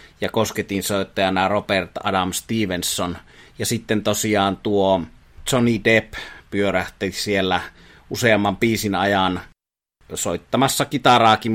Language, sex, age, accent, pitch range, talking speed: Finnish, male, 30-49, native, 95-110 Hz, 100 wpm